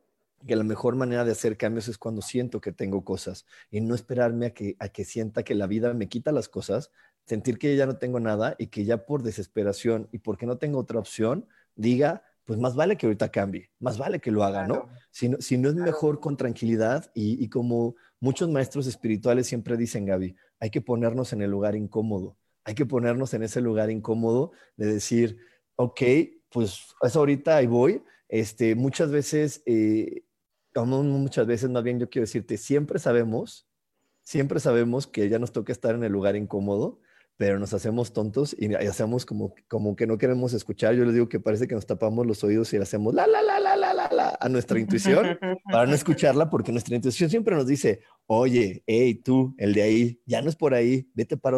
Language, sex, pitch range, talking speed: Spanish, male, 110-135 Hz, 205 wpm